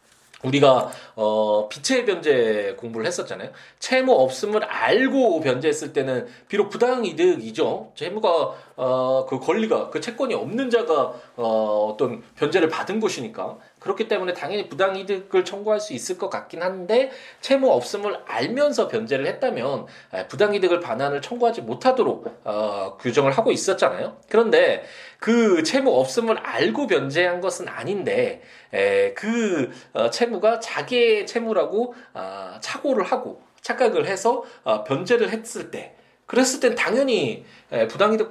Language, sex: Korean, male